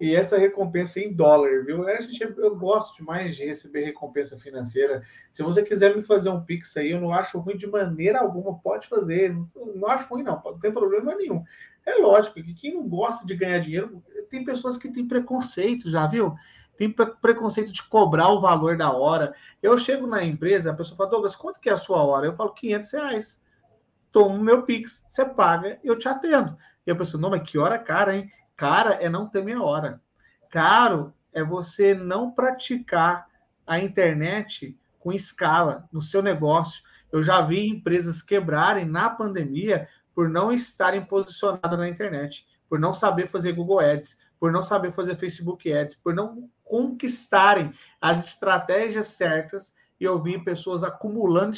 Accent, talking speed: Brazilian, 180 wpm